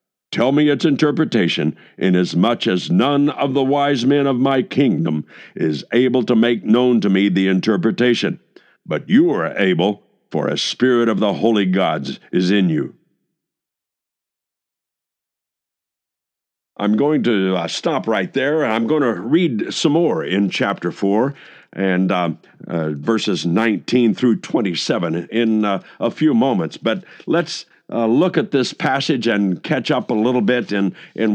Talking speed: 155 wpm